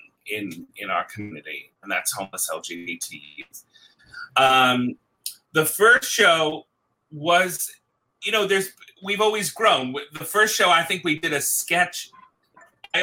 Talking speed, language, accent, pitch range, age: 135 wpm, English, American, 125-165 Hz, 30-49